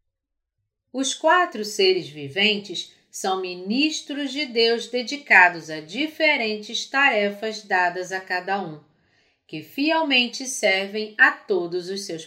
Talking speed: 110 wpm